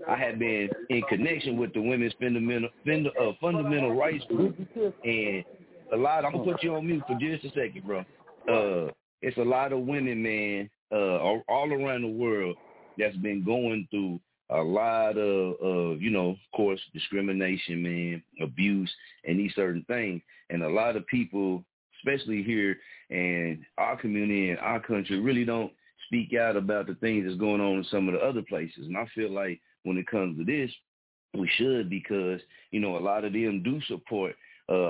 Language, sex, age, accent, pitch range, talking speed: English, male, 40-59, American, 95-115 Hz, 185 wpm